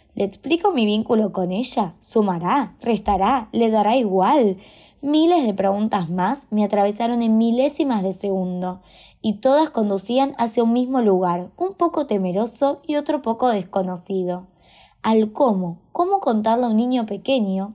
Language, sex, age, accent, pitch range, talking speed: Spanish, female, 20-39, Argentinian, 190-255 Hz, 145 wpm